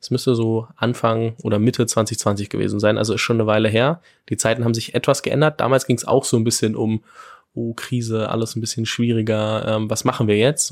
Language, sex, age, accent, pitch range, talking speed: German, male, 20-39, German, 105-120 Hz, 225 wpm